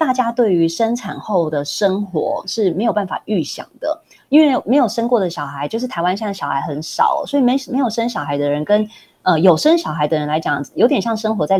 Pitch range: 170-235 Hz